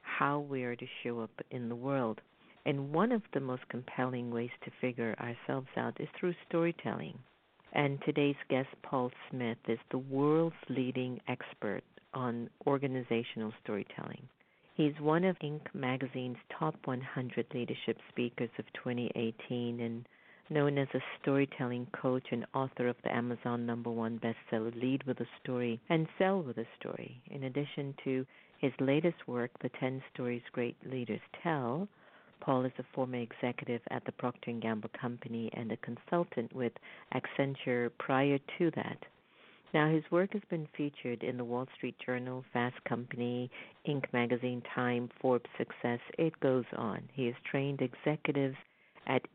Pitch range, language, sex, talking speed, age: 120-140 Hz, English, female, 155 wpm, 50-69